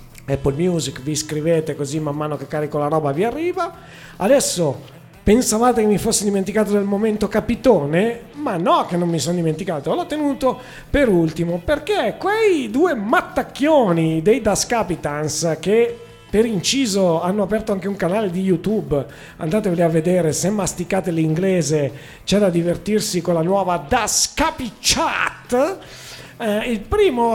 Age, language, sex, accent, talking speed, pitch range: 40-59, Italian, male, native, 145 wpm, 170-250 Hz